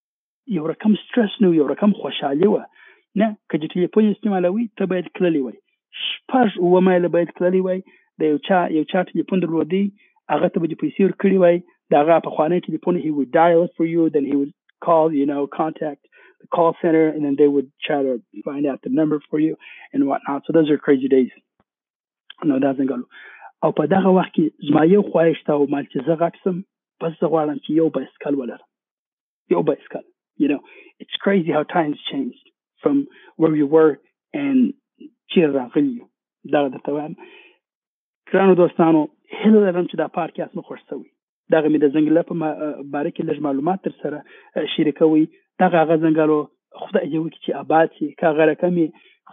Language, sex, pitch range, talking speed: Urdu, male, 150-190 Hz, 135 wpm